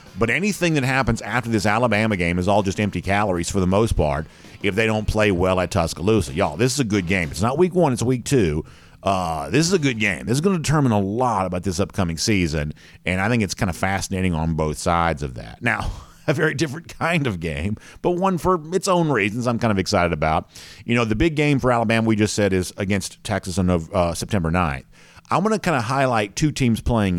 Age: 50-69